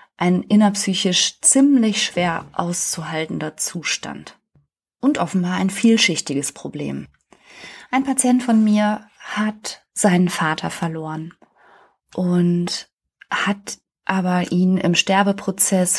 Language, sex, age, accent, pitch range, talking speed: German, female, 20-39, German, 170-195 Hz, 95 wpm